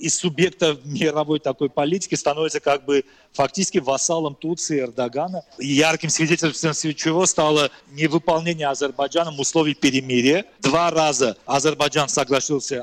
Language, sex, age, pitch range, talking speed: Russian, male, 40-59, 135-165 Hz, 120 wpm